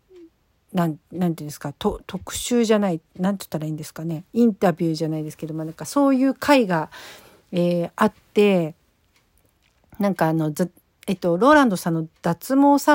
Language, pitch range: Japanese, 170-230 Hz